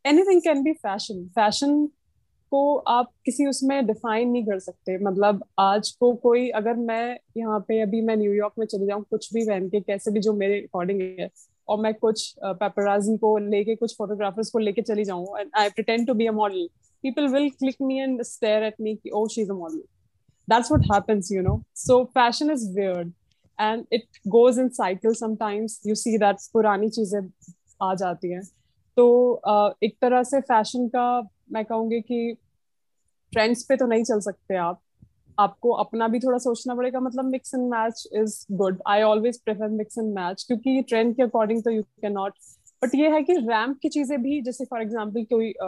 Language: Hindi